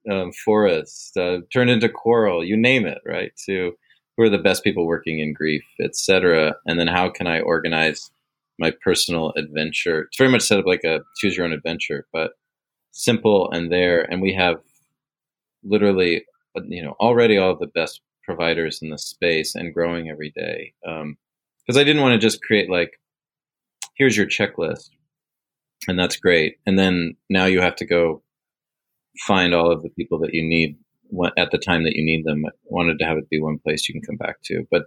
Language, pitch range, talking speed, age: English, 85-100 Hz, 195 wpm, 30-49